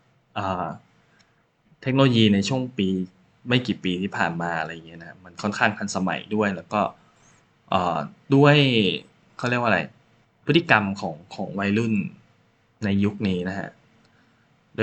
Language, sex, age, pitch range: Thai, male, 20-39, 100-130 Hz